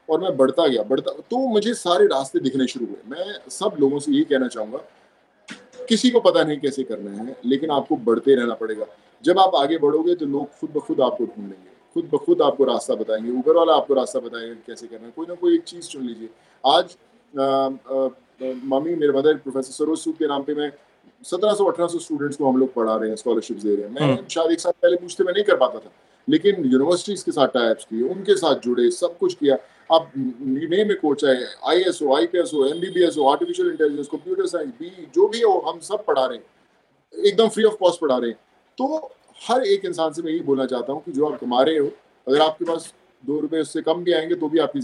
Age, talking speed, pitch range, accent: 30-49, 225 wpm, 135-185 Hz, native